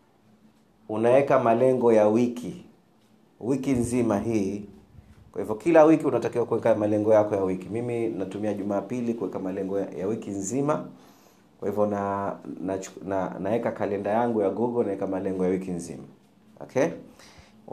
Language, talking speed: Swahili, 130 wpm